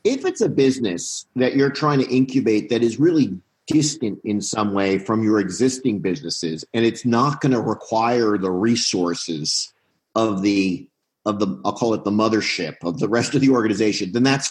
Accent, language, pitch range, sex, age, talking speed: American, English, 95-120 Hz, male, 50-69, 185 wpm